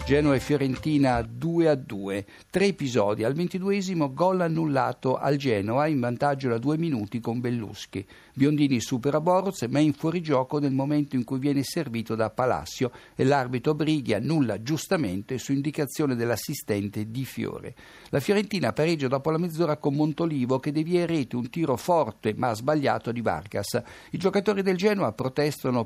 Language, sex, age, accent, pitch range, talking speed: Italian, male, 60-79, native, 115-155 Hz, 160 wpm